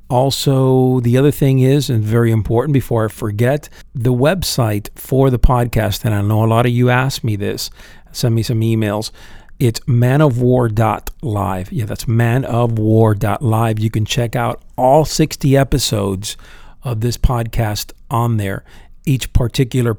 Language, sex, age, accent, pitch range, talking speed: English, male, 50-69, American, 110-130 Hz, 145 wpm